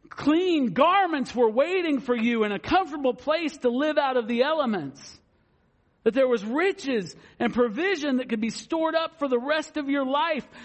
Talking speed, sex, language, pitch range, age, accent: 185 wpm, male, English, 185-285 Hz, 50-69, American